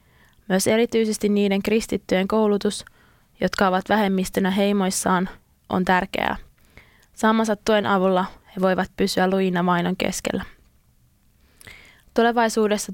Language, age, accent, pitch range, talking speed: Finnish, 20-39, native, 185-210 Hz, 95 wpm